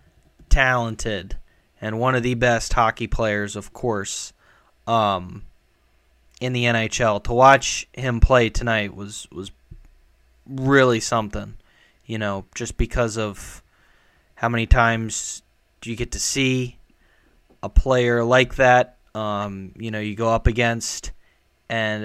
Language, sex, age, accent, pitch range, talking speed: English, male, 20-39, American, 100-120 Hz, 130 wpm